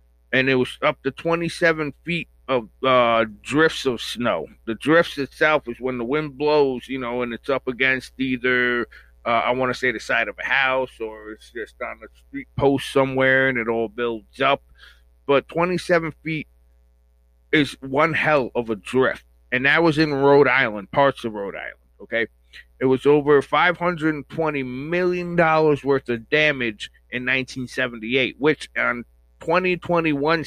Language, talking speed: English, 165 wpm